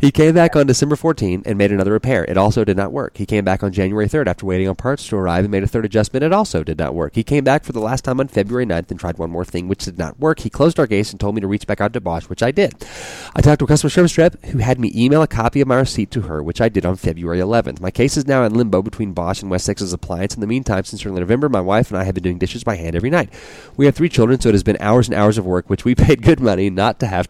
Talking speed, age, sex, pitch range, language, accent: 325 wpm, 30-49, male, 95-125 Hz, English, American